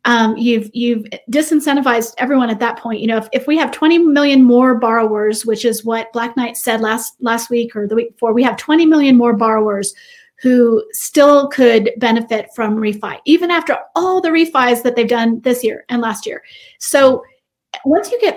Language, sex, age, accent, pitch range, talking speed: English, female, 30-49, American, 230-275 Hz, 195 wpm